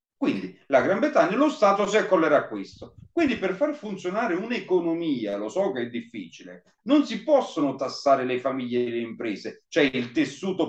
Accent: native